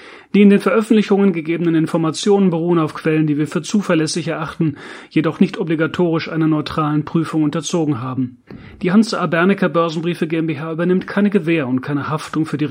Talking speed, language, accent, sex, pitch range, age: 160 wpm, German, German, male, 150-175 Hz, 30-49